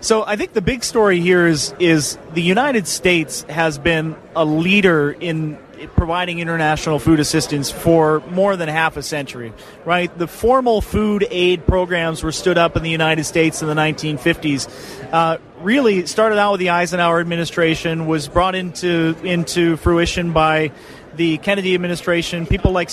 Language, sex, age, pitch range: English, male, 30-49, 160-190 Hz